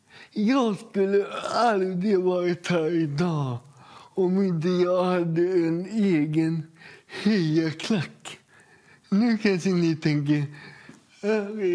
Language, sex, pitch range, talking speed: English, male, 160-195 Hz, 90 wpm